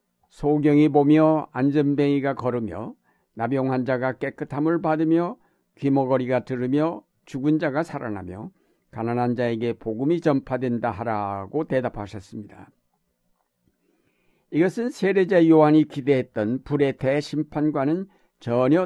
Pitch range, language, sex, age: 120-155 Hz, Korean, male, 60-79